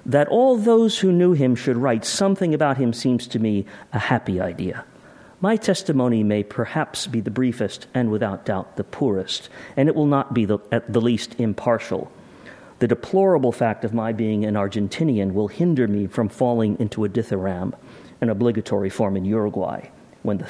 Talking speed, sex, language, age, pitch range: 180 wpm, male, English, 50-69, 105-135 Hz